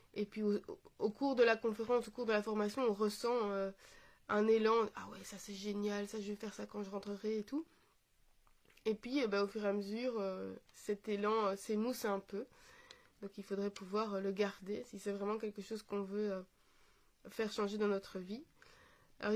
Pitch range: 205-250 Hz